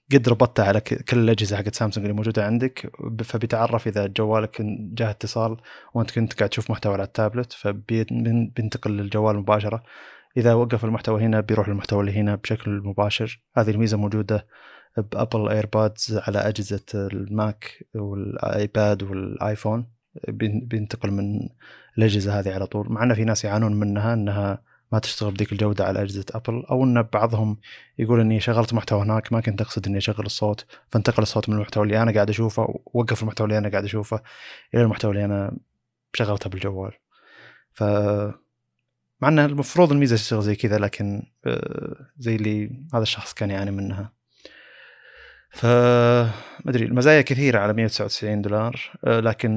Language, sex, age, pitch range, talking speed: Arabic, male, 20-39, 105-115 Hz, 150 wpm